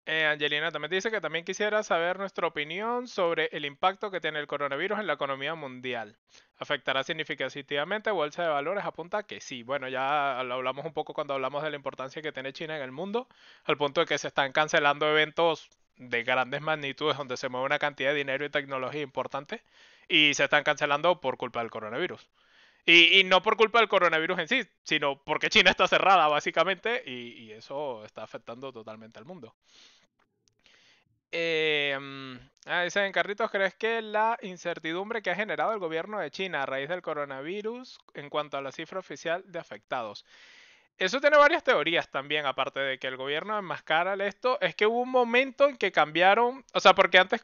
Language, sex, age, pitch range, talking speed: Spanish, male, 20-39, 140-195 Hz, 185 wpm